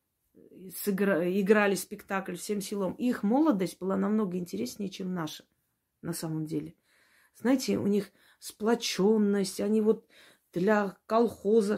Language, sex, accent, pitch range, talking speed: Russian, female, native, 195-225 Hz, 115 wpm